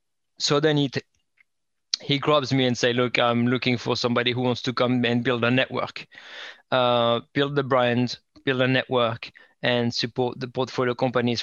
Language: English